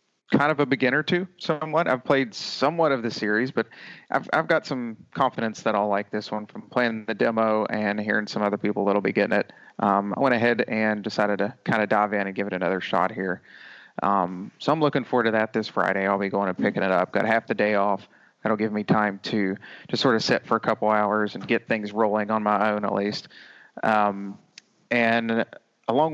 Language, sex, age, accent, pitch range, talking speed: English, male, 30-49, American, 105-120 Hz, 225 wpm